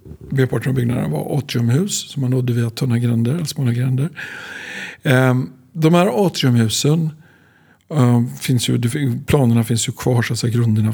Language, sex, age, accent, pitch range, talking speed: Swedish, male, 50-69, native, 120-135 Hz, 145 wpm